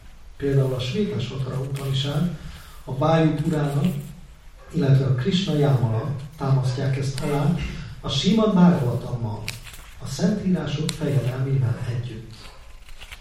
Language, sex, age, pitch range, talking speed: Hungarian, male, 40-59, 125-170 Hz, 95 wpm